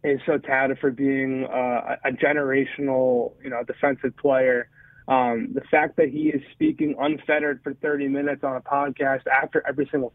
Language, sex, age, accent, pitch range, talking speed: English, male, 30-49, American, 135-155 Hz, 170 wpm